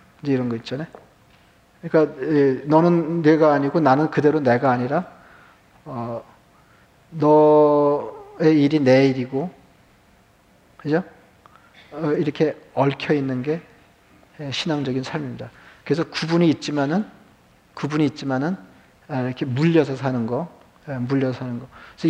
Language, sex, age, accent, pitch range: Korean, male, 40-59, native, 130-160 Hz